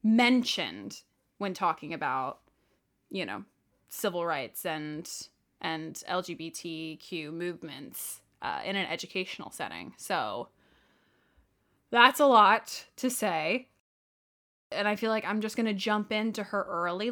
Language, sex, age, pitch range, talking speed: English, female, 10-29, 175-245 Hz, 120 wpm